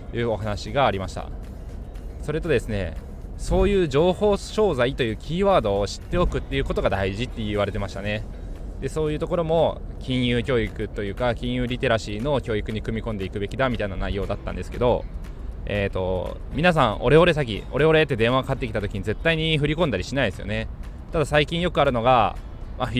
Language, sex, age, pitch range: Japanese, male, 20-39, 100-135 Hz